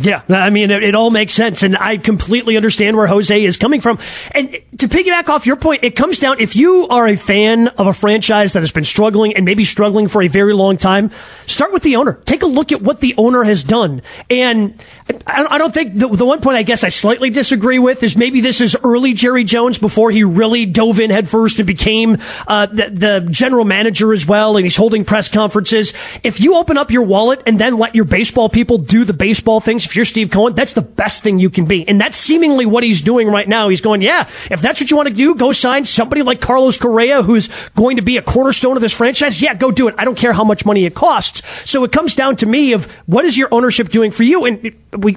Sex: male